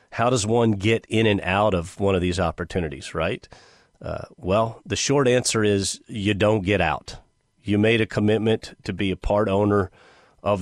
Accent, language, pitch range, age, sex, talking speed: American, English, 95-120 Hz, 40-59, male, 185 wpm